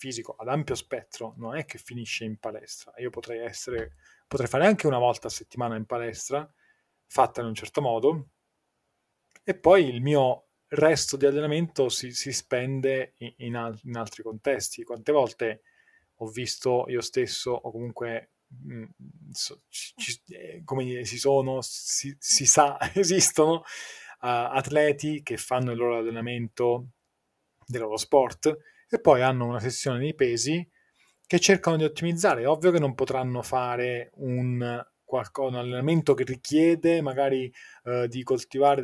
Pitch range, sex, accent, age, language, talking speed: 120-140 Hz, male, native, 20-39, Italian, 140 wpm